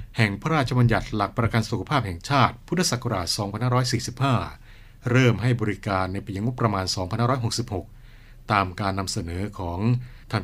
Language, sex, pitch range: Thai, male, 100-120 Hz